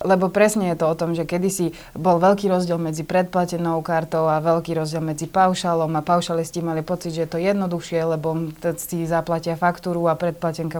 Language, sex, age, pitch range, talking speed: Slovak, female, 20-39, 165-180 Hz, 185 wpm